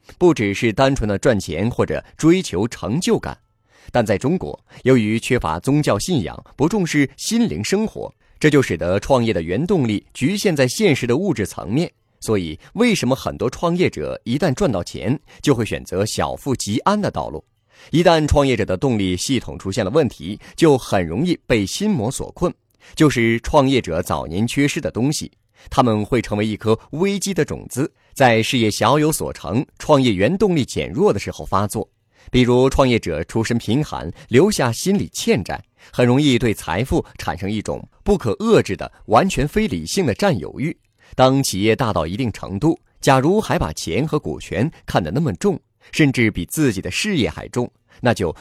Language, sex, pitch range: Chinese, male, 105-150 Hz